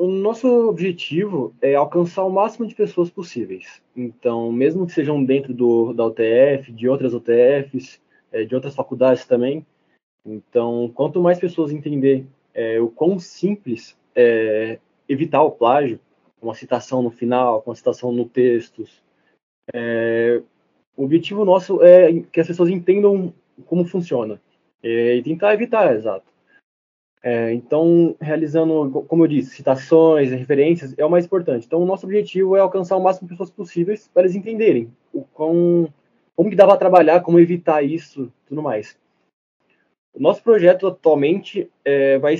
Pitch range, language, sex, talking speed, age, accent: 125-175 Hz, Portuguese, male, 145 wpm, 20-39, Brazilian